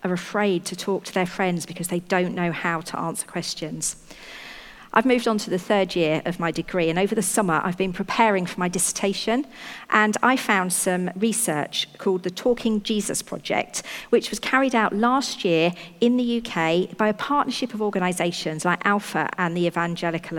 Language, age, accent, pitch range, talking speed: English, 50-69, British, 175-225 Hz, 190 wpm